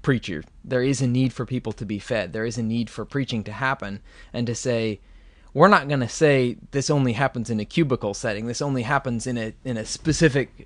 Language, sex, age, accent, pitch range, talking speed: English, male, 20-39, American, 115-140 Hz, 225 wpm